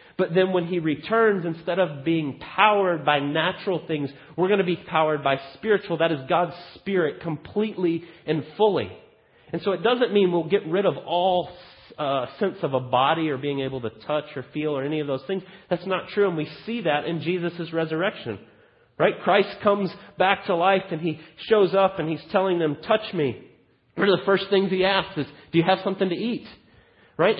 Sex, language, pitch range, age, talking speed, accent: male, English, 150-190 Hz, 30-49, 205 wpm, American